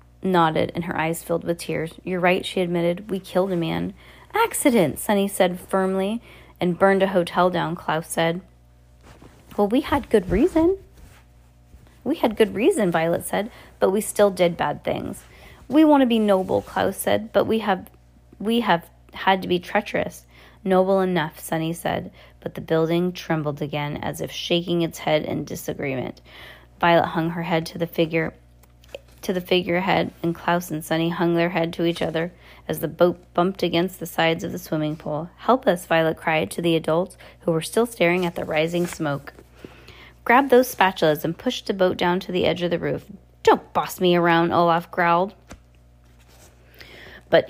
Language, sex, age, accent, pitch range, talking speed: English, female, 30-49, American, 155-185 Hz, 180 wpm